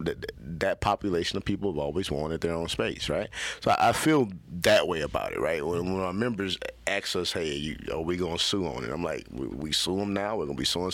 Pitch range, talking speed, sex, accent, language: 80-100 Hz, 270 wpm, male, American, English